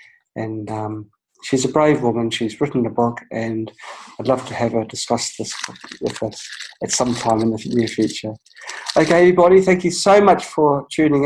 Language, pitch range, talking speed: English, 120-150 Hz, 185 wpm